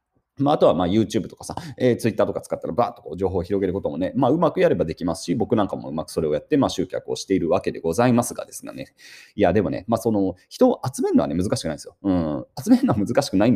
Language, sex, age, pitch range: Japanese, male, 30-49, 95-130 Hz